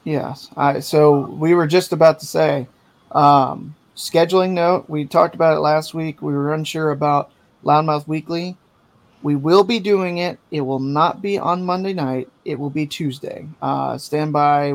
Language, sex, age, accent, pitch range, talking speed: English, male, 30-49, American, 140-160 Hz, 175 wpm